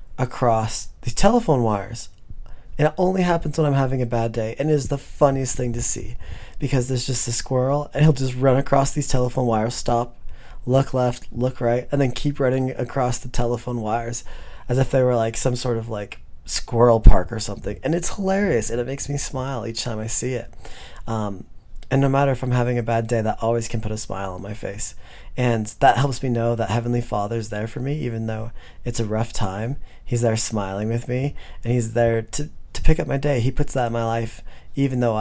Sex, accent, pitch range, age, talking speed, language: male, American, 110-125 Hz, 20-39, 220 wpm, English